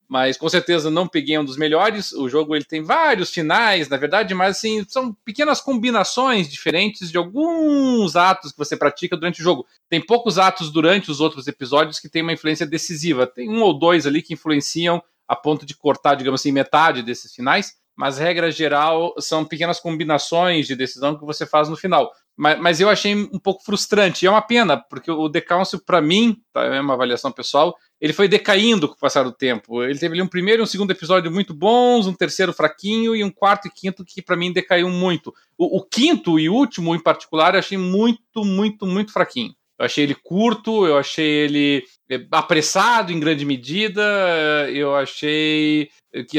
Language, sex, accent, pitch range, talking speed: Portuguese, male, Brazilian, 150-195 Hz, 195 wpm